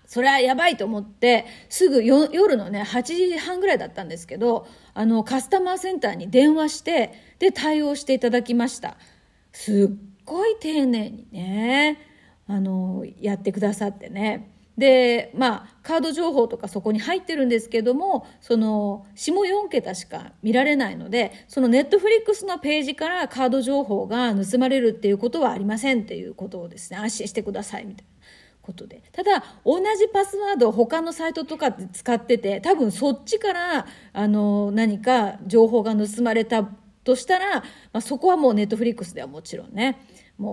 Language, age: Japanese, 30-49